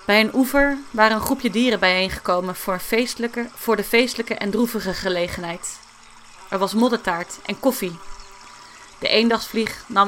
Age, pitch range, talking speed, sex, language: 30-49, 180-230 Hz, 135 wpm, female, Dutch